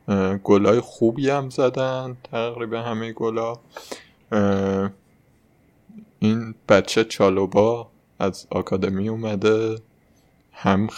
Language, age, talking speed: Persian, 20-39, 75 wpm